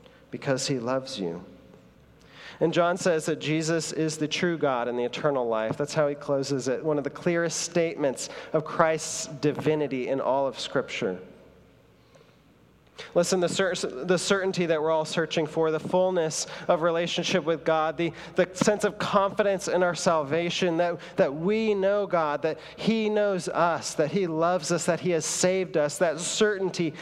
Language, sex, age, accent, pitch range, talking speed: English, male, 40-59, American, 125-170 Hz, 170 wpm